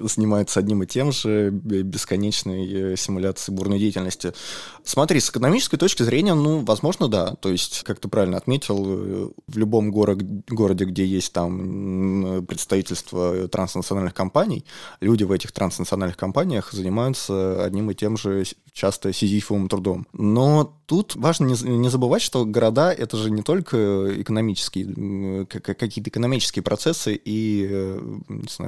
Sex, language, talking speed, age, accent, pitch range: male, Russian, 135 wpm, 20-39, native, 95-115 Hz